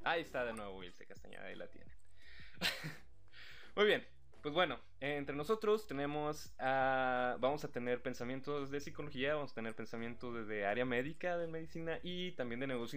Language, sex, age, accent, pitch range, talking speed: Spanish, male, 20-39, Mexican, 120-160 Hz, 165 wpm